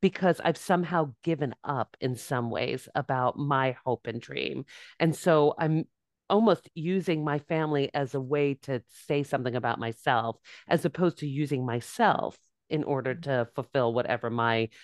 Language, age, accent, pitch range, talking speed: English, 40-59, American, 135-185 Hz, 160 wpm